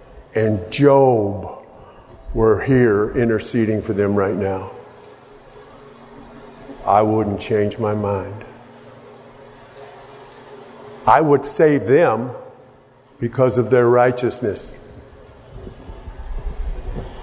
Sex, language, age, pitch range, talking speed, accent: male, English, 50-69, 110-150 Hz, 75 wpm, American